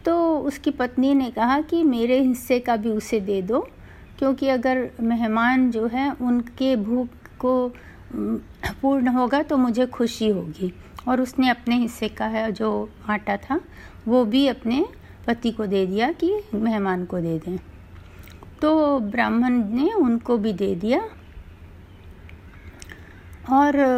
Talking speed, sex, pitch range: 140 wpm, female, 200-270 Hz